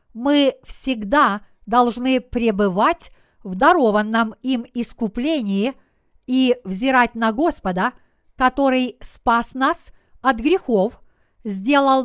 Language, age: Russian, 50-69